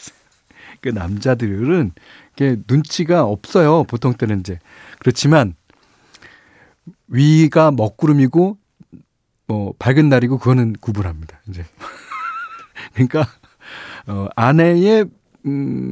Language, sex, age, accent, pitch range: Korean, male, 40-59, native, 110-165 Hz